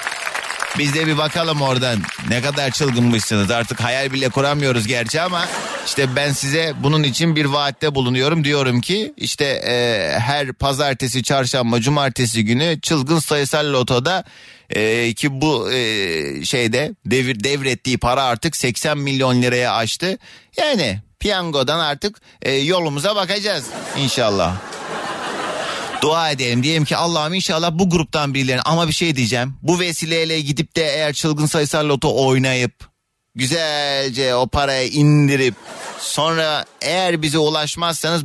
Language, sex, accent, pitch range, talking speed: Turkish, male, native, 125-160 Hz, 130 wpm